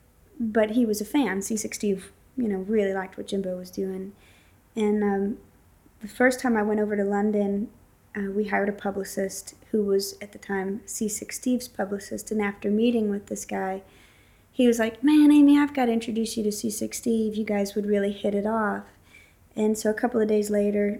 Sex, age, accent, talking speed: female, 30-49, American, 210 wpm